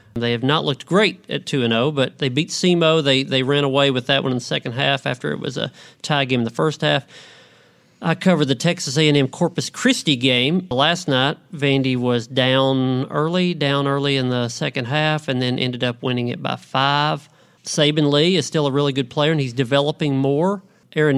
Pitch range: 130-160 Hz